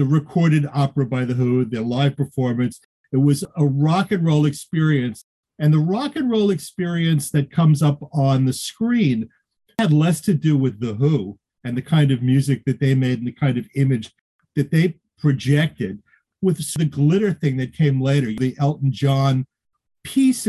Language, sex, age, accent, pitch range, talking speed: English, male, 50-69, American, 135-180 Hz, 180 wpm